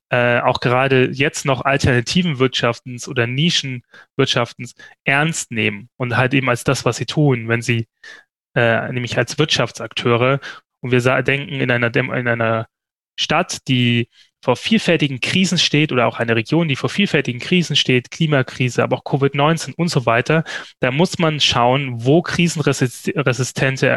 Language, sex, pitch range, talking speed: German, male, 125-155 Hz, 155 wpm